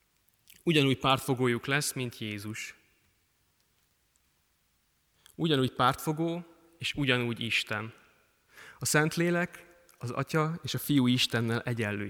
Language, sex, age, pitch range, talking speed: Hungarian, male, 20-39, 110-140 Hz, 95 wpm